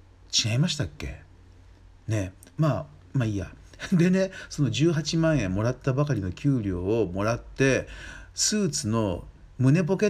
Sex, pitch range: male, 90-145 Hz